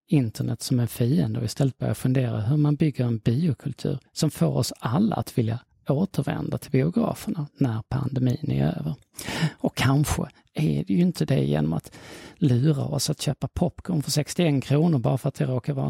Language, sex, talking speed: Swedish, male, 185 wpm